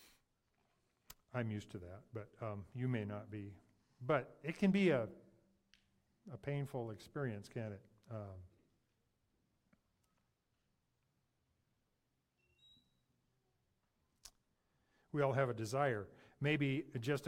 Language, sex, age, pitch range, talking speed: English, male, 50-69, 105-130 Hz, 95 wpm